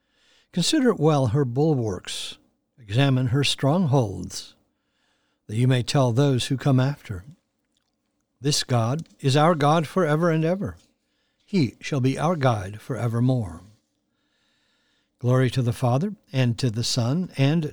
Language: English